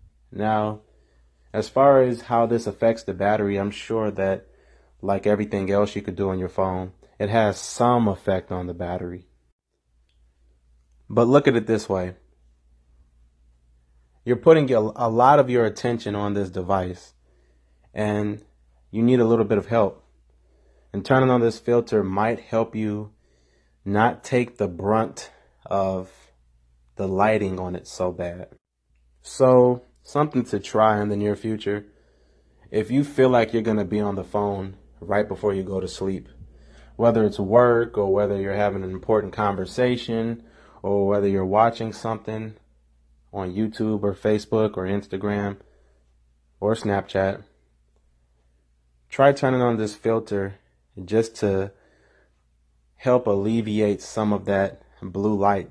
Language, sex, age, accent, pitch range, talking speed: English, male, 30-49, American, 65-110 Hz, 145 wpm